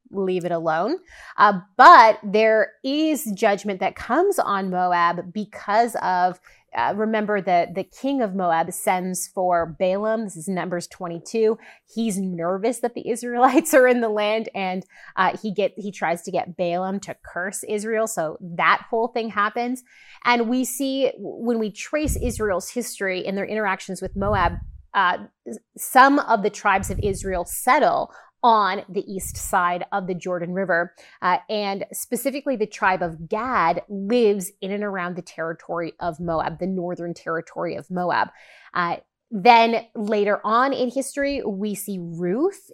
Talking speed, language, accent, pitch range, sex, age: 155 wpm, English, American, 185-240 Hz, female, 30-49